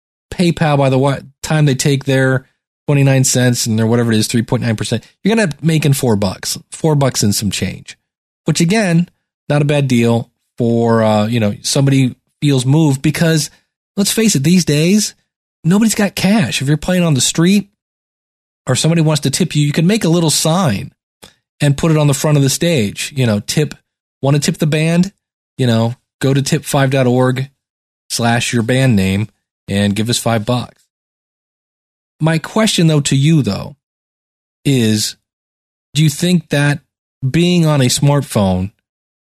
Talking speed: 175 wpm